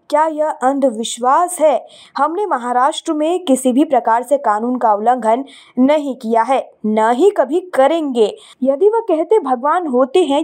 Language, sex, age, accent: Hindi, female, 20-39, native